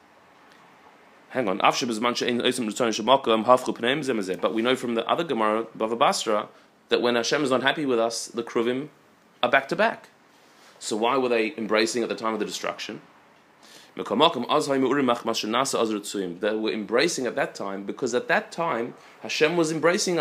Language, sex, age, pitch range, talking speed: English, male, 30-49, 115-150 Hz, 140 wpm